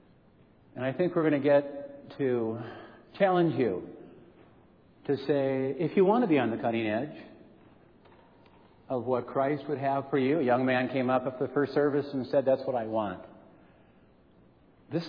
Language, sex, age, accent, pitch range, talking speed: English, male, 50-69, American, 120-170 Hz, 175 wpm